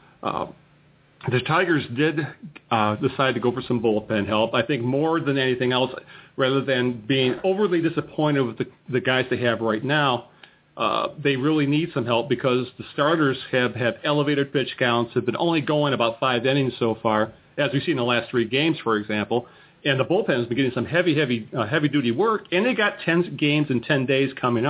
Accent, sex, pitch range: American, male, 115-150 Hz